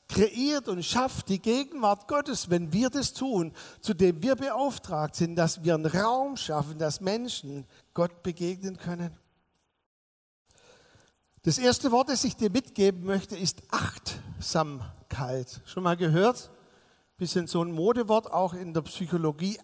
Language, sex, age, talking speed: German, male, 60-79, 145 wpm